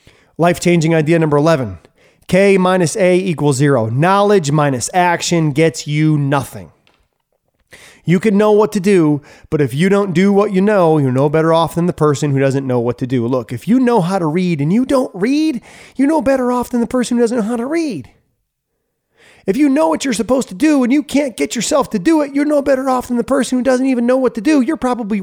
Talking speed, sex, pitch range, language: 235 wpm, male, 130-205 Hz, English